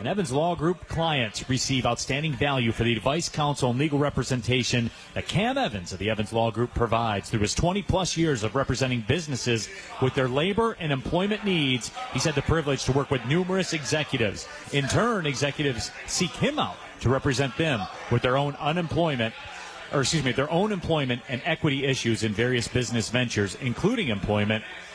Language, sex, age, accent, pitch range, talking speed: English, male, 40-59, American, 115-160 Hz, 180 wpm